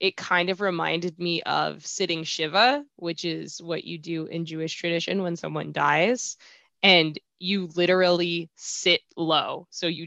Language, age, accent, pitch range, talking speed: English, 20-39, American, 175-205 Hz, 155 wpm